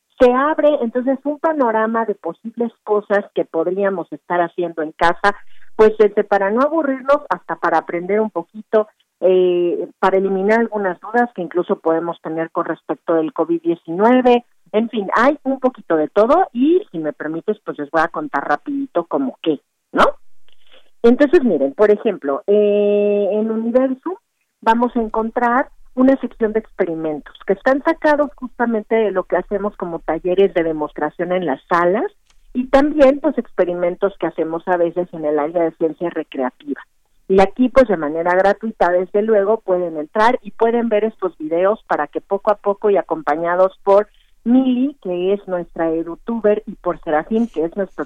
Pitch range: 170-230 Hz